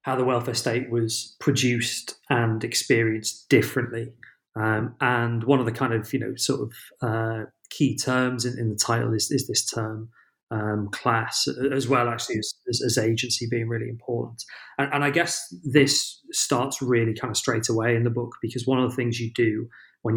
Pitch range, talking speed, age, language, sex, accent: 110-130 Hz, 195 wpm, 30-49, English, male, British